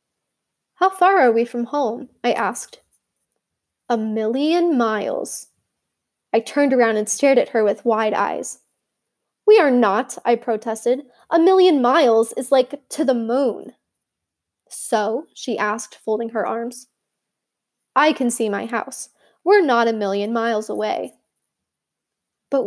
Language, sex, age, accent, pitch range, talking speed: English, female, 10-29, American, 230-290 Hz, 140 wpm